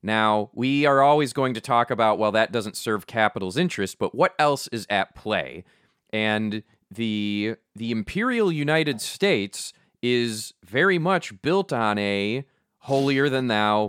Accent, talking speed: American, 145 wpm